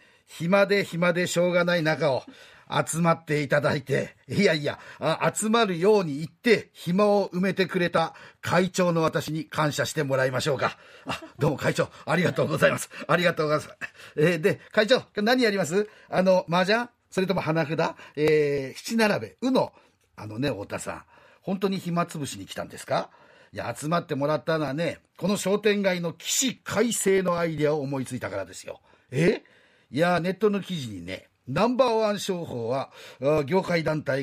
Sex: male